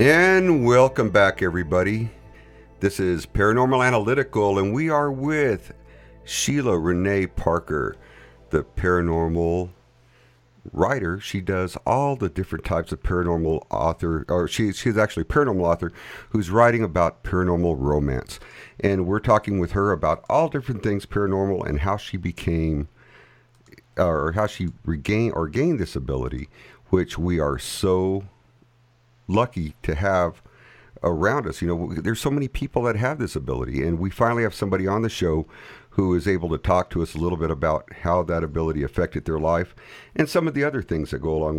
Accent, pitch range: American, 85-110 Hz